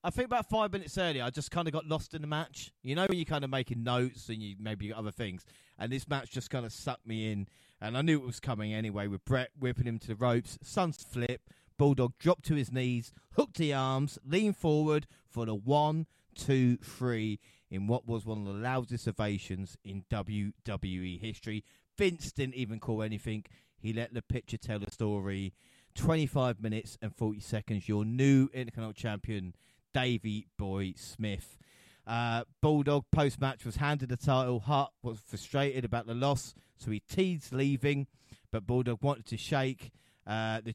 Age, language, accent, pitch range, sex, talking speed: 30-49, English, British, 110-140 Hz, male, 190 wpm